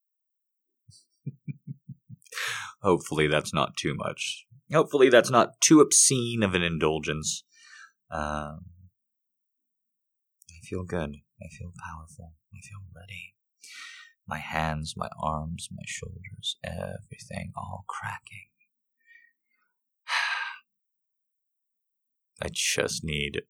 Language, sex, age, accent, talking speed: English, male, 30-49, American, 90 wpm